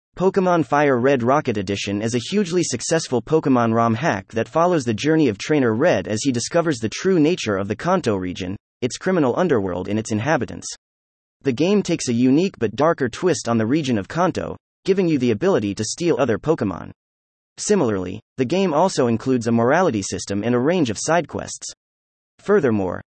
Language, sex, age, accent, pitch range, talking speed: English, male, 30-49, American, 105-160 Hz, 185 wpm